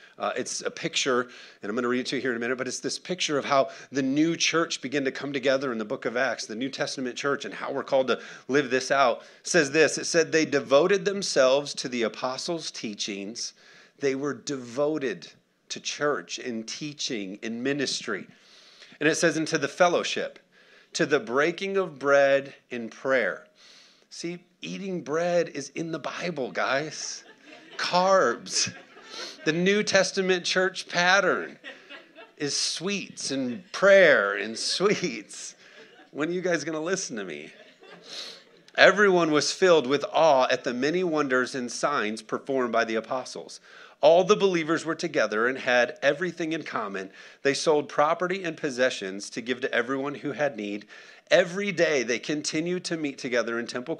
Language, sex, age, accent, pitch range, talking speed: English, male, 40-59, American, 130-175 Hz, 175 wpm